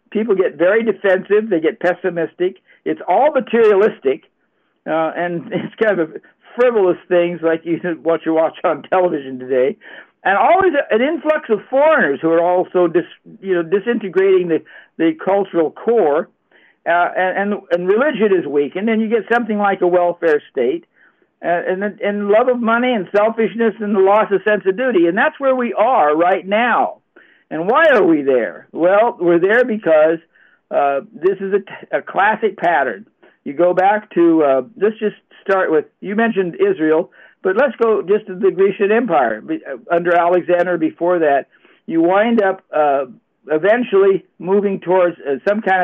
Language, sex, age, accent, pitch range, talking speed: English, male, 60-79, American, 170-220 Hz, 170 wpm